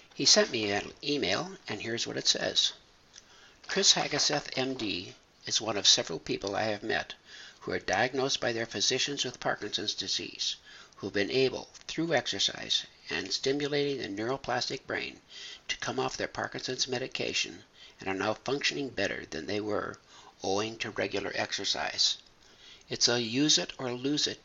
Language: English